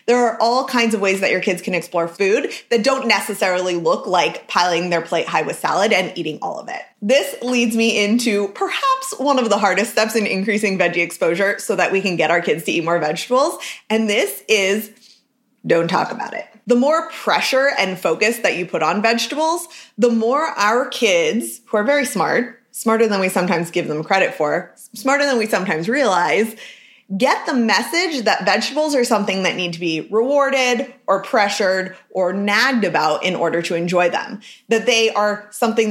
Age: 20-39